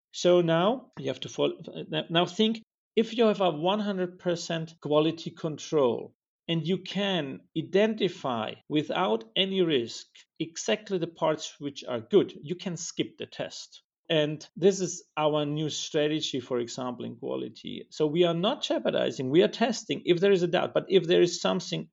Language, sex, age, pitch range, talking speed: English, male, 40-59, 135-180 Hz, 165 wpm